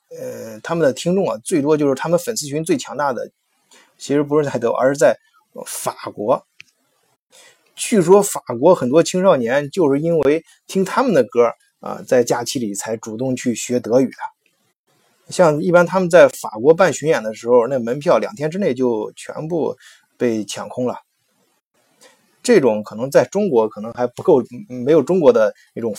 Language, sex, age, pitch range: Chinese, male, 20-39, 120-185 Hz